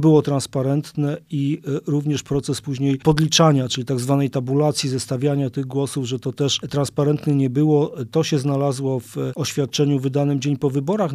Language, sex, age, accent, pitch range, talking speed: Polish, male, 40-59, native, 130-150 Hz, 155 wpm